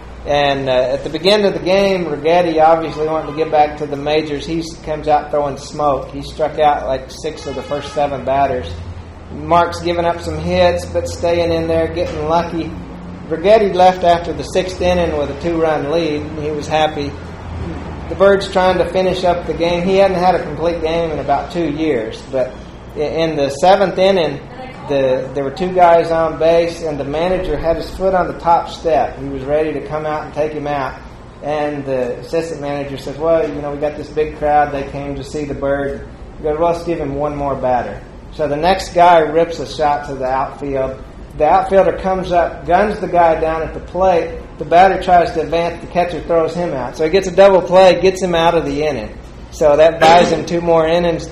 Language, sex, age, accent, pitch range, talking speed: English, male, 40-59, American, 140-170 Hz, 210 wpm